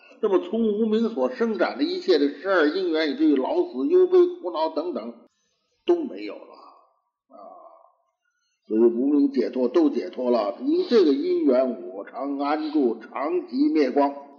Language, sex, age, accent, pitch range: Chinese, male, 50-69, native, 235-360 Hz